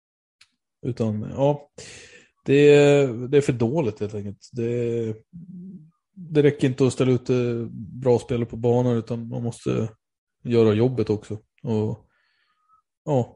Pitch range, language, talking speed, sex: 110-130 Hz, Swedish, 125 wpm, male